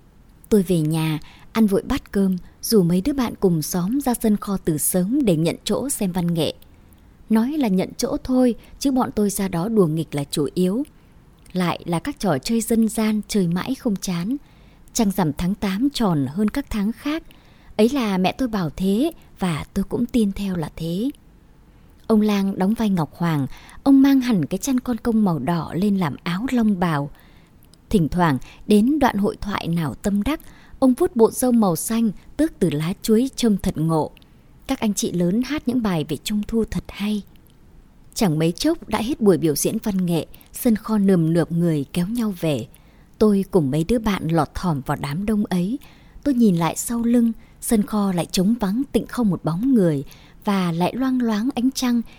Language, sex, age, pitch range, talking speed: Vietnamese, male, 20-39, 170-230 Hz, 200 wpm